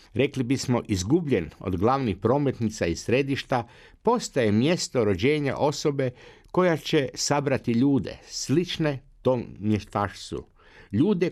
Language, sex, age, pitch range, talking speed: Croatian, male, 60-79, 110-140 Hz, 105 wpm